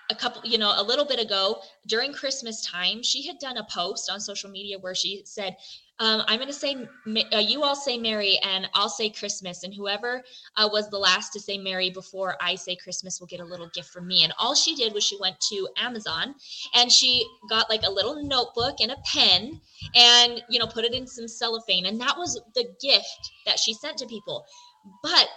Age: 20-39